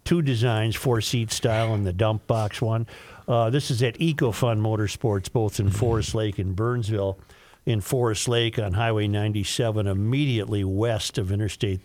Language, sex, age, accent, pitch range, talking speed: English, male, 50-69, American, 105-130 Hz, 160 wpm